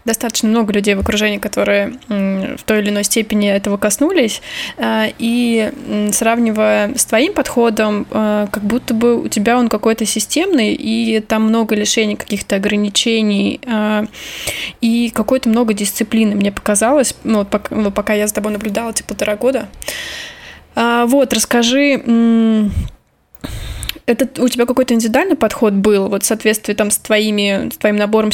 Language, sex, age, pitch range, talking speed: Russian, female, 20-39, 210-235 Hz, 140 wpm